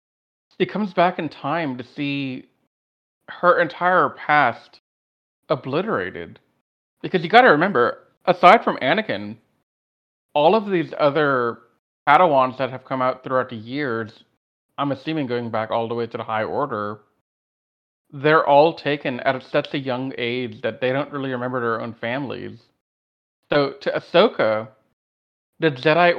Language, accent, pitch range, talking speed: English, American, 110-150 Hz, 145 wpm